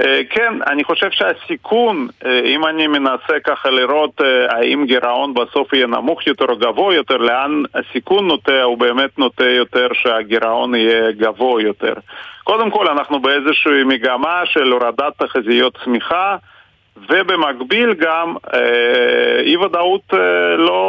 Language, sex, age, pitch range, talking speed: Hebrew, male, 40-59, 120-185 Hz, 140 wpm